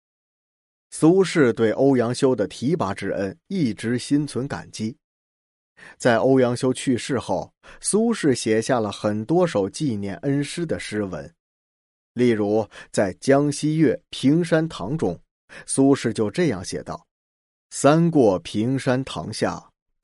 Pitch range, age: 105-145 Hz, 20-39